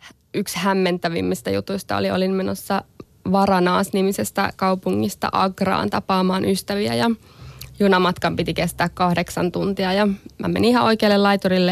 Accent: native